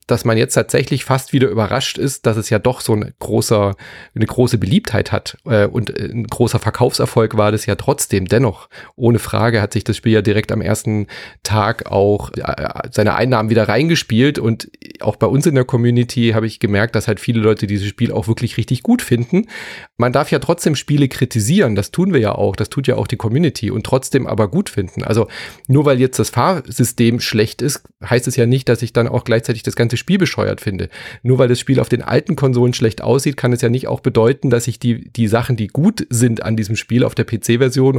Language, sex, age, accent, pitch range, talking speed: German, male, 30-49, German, 110-130 Hz, 215 wpm